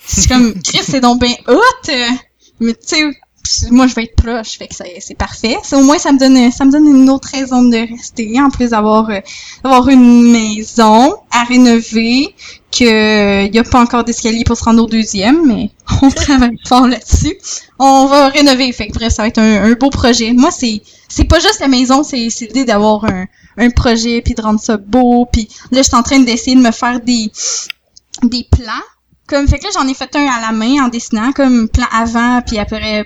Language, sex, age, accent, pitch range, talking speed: French, female, 10-29, Canadian, 230-285 Hz, 225 wpm